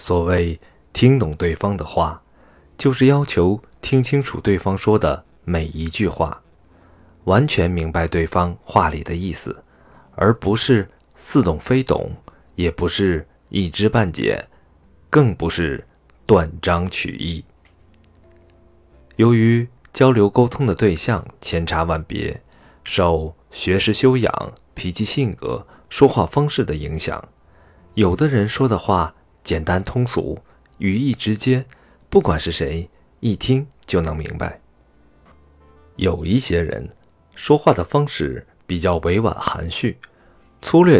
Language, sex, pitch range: Chinese, male, 80-110 Hz